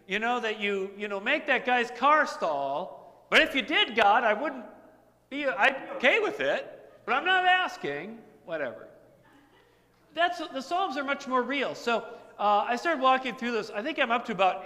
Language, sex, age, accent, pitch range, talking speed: English, male, 40-59, American, 170-240 Hz, 200 wpm